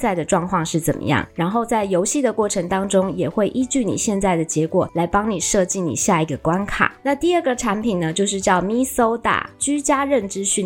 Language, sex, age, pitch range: Chinese, female, 20-39, 180-235 Hz